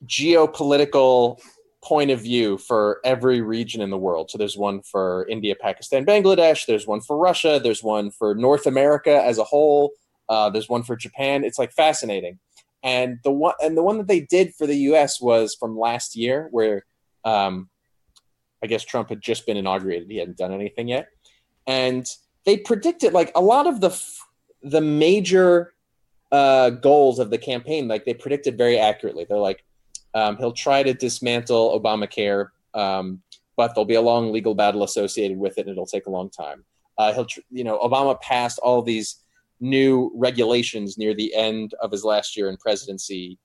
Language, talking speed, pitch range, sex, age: English, 185 wpm, 105-140 Hz, male, 20-39